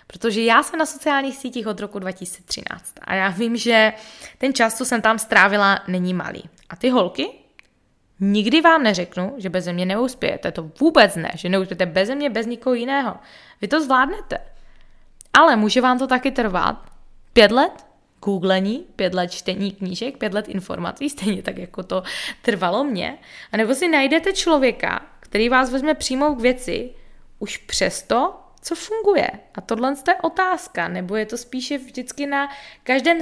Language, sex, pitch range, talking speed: Czech, female, 205-280 Hz, 165 wpm